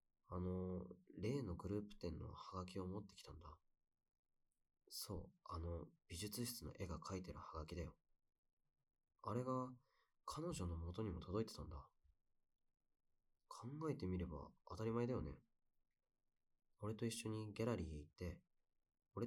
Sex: male